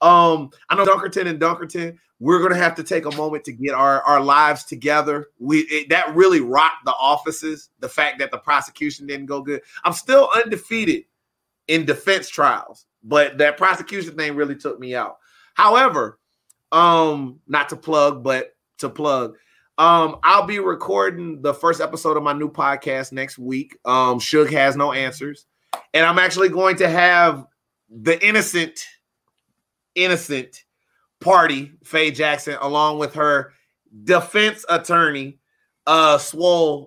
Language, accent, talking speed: English, American, 150 wpm